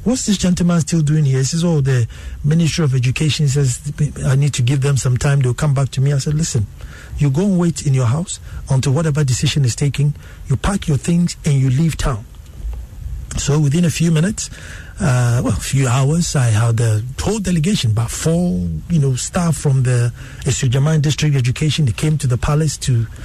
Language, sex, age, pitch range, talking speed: English, male, 60-79, 130-165 Hz, 205 wpm